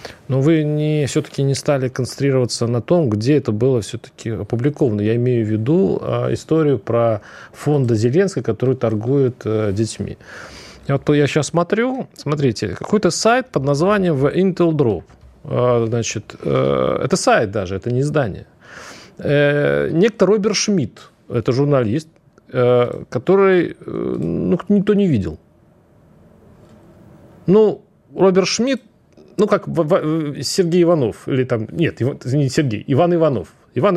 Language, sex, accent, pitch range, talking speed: Russian, male, native, 120-170 Hz, 135 wpm